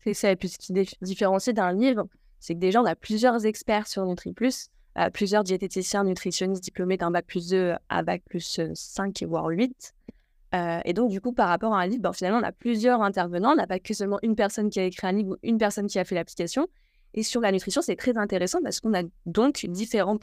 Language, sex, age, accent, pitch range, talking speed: French, female, 20-39, French, 180-215 Hz, 230 wpm